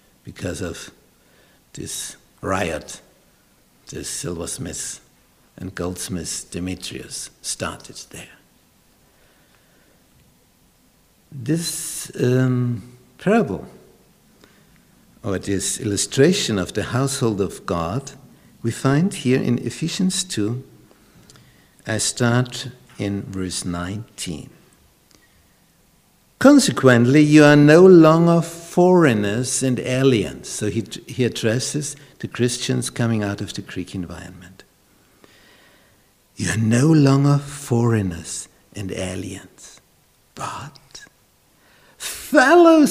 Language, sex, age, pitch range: English, male, 60-79, 110-160 Hz